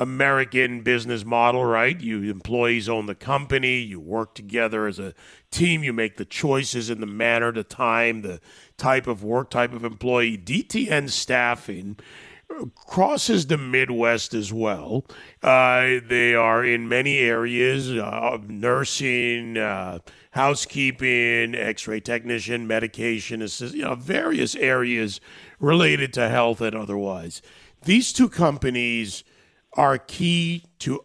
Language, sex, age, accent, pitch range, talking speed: English, male, 40-59, American, 110-130 Hz, 125 wpm